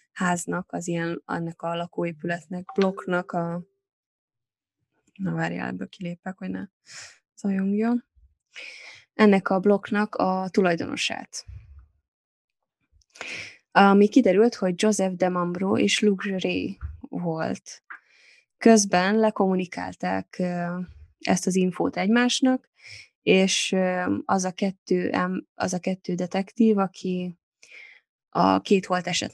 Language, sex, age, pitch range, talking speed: Hungarian, female, 10-29, 175-205 Hz, 95 wpm